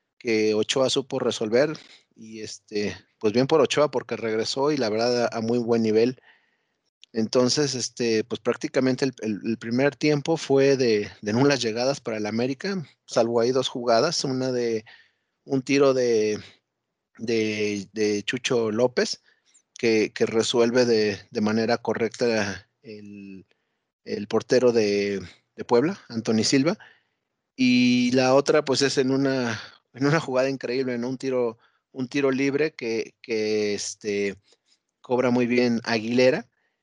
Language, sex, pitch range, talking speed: Spanish, male, 110-130 Hz, 145 wpm